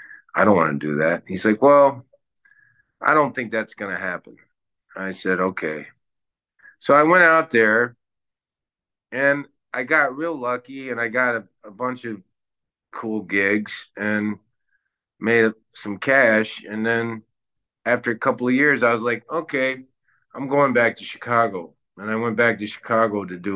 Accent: American